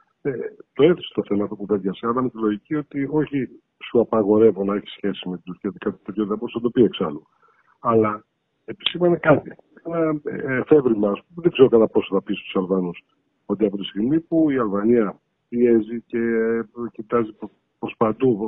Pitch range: 105-155 Hz